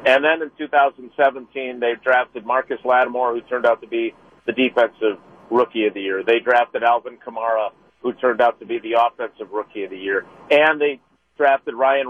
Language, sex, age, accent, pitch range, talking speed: English, male, 50-69, American, 130-175 Hz, 190 wpm